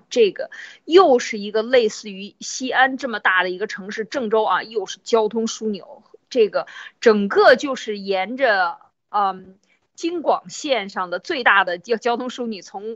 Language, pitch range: Chinese, 195-275 Hz